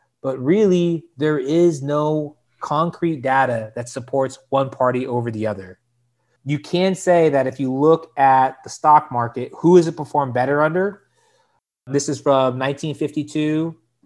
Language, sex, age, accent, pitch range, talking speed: English, male, 30-49, American, 125-150 Hz, 150 wpm